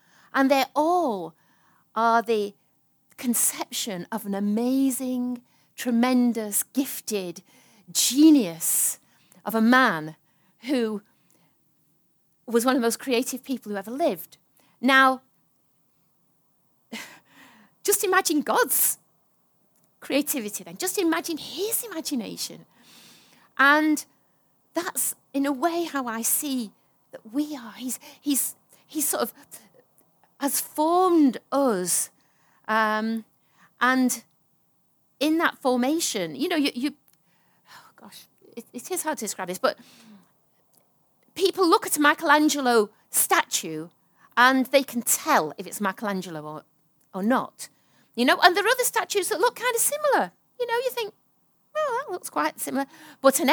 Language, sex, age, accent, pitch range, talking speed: English, female, 40-59, British, 200-295 Hz, 125 wpm